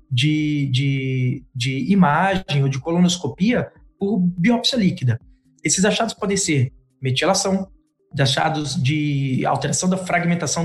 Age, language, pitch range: 20-39, Portuguese, 140-180 Hz